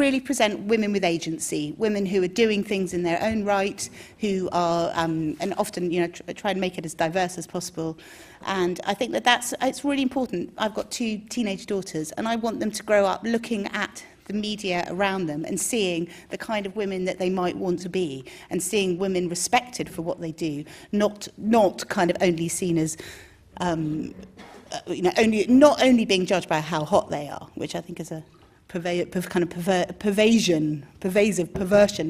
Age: 40-59